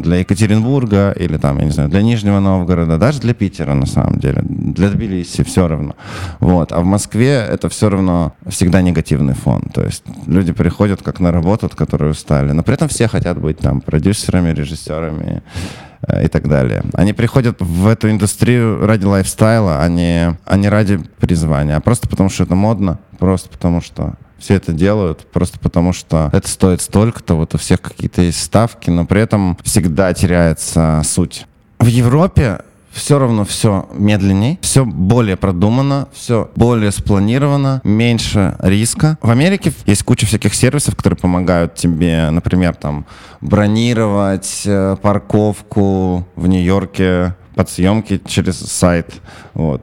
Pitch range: 85-105 Hz